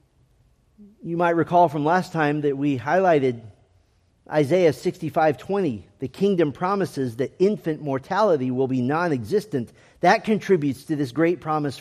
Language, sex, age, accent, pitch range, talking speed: English, male, 50-69, American, 140-195 Hz, 130 wpm